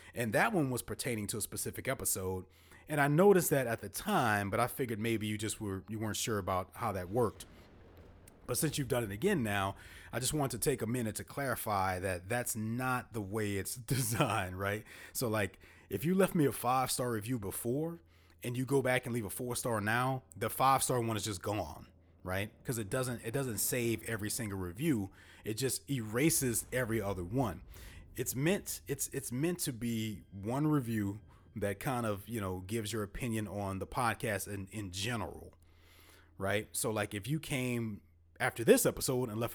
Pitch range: 95-125 Hz